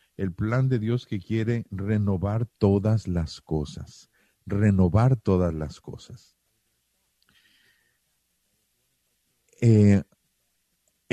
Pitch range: 100-140 Hz